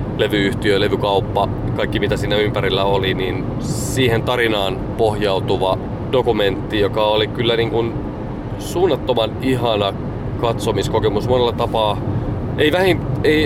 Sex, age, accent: male, 30-49, native